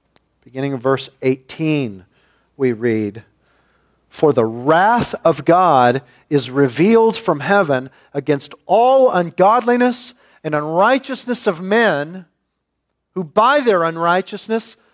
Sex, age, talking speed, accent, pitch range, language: male, 40-59, 105 wpm, American, 170-245 Hz, English